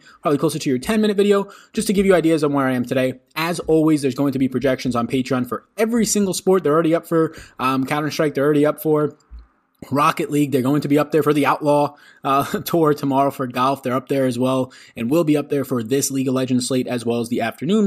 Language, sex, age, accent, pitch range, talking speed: English, male, 20-39, American, 125-165 Hz, 255 wpm